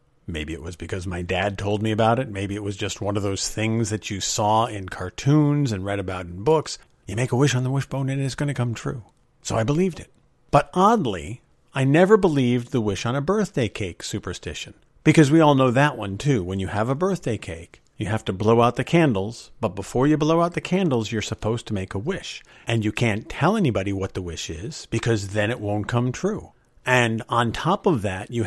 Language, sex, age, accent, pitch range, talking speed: English, male, 50-69, American, 105-145 Hz, 235 wpm